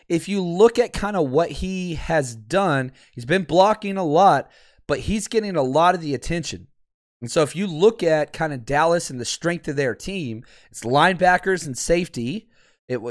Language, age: English, 30-49